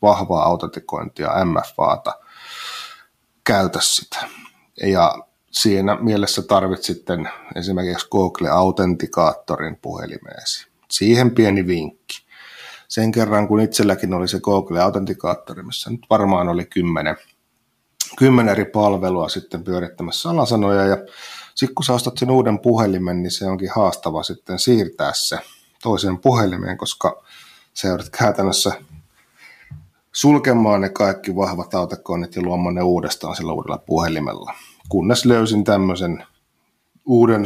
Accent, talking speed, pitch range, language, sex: native, 110 wpm, 90-105 Hz, Finnish, male